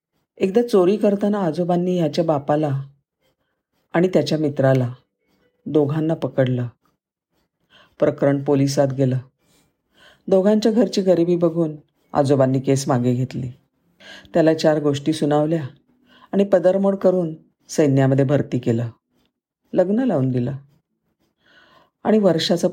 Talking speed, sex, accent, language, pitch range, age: 100 wpm, female, native, Marathi, 140-180 Hz, 50-69